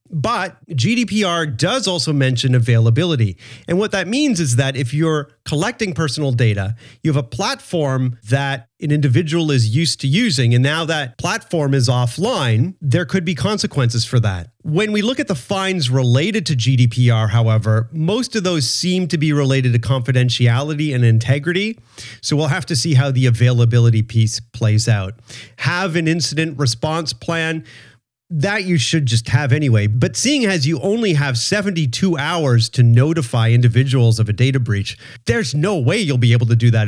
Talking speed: 175 wpm